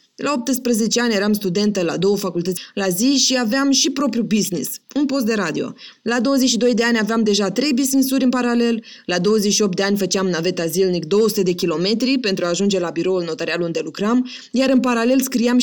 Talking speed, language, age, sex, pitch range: 195 wpm, Romanian, 20-39, female, 195-265 Hz